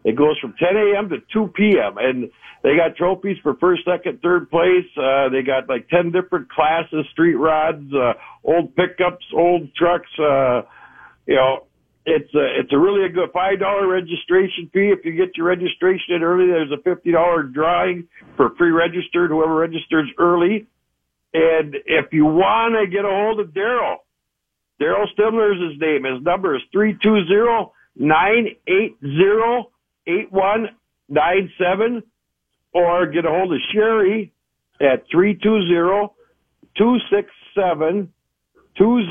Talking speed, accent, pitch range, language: 135 wpm, American, 155-195 Hz, English